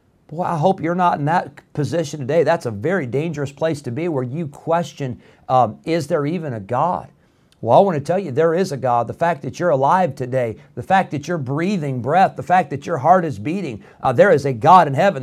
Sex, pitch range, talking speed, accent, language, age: male, 120-155 Hz, 240 wpm, American, English, 50-69